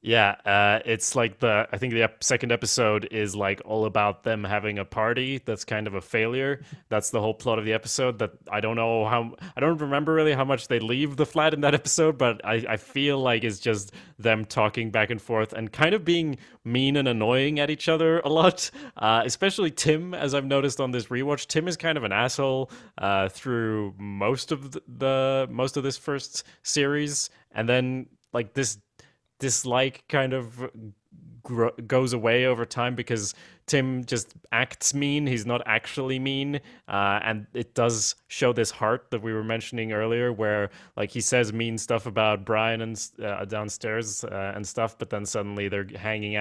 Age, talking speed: 20-39, 190 wpm